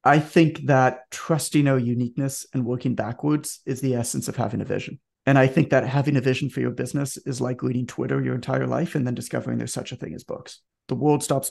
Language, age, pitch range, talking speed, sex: English, 30-49, 120-150 Hz, 235 wpm, male